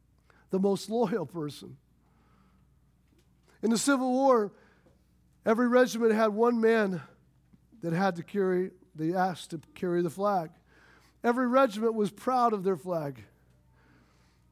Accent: American